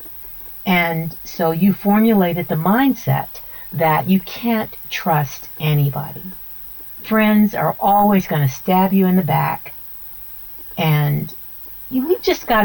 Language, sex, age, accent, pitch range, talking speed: English, female, 50-69, American, 145-190 Hz, 120 wpm